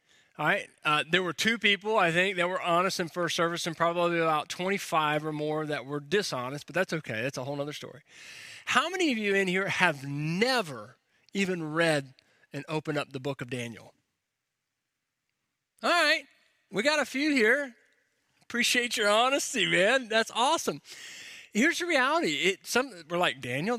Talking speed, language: 175 wpm, English